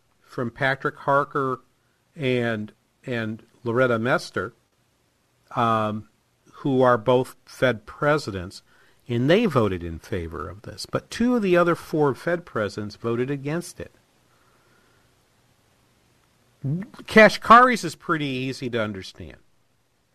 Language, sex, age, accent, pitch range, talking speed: English, male, 50-69, American, 110-155 Hz, 110 wpm